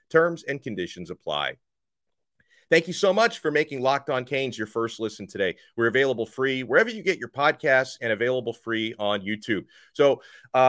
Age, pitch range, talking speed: 30-49, 105-145 Hz, 180 wpm